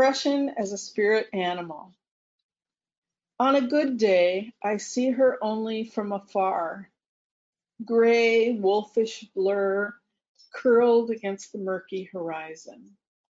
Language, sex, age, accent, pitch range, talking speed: English, female, 40-59, American, 190-245 Hz, 105 wpm